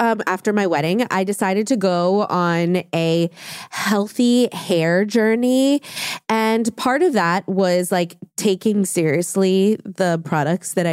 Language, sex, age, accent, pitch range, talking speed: English, female, 20-39, American, 180-235 Hz, 130 wpm